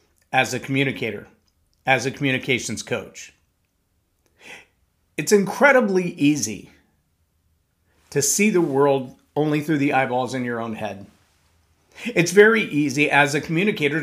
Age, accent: 50-69, American